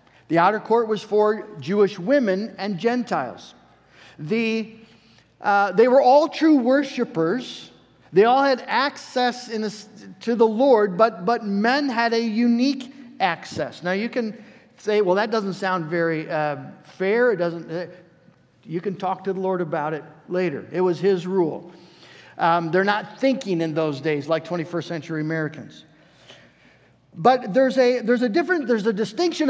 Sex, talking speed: male, 160 wpm